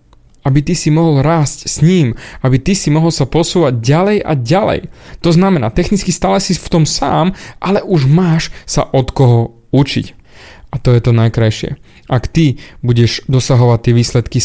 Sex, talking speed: male, 175 wpm